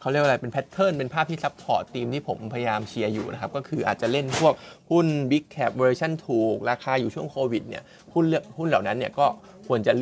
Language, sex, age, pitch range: Thai, male, 20-39, 120-150 Hz